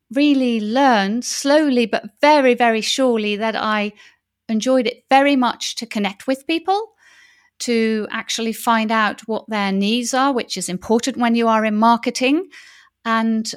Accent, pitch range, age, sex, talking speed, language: British, 205-245 Hz, 40-59, female, 150 wpm, English